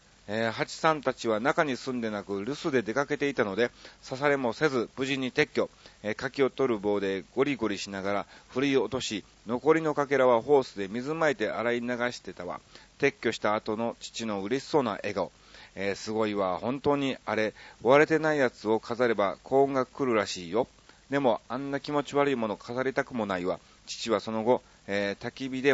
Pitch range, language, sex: 105-140 Hz, Japanese, male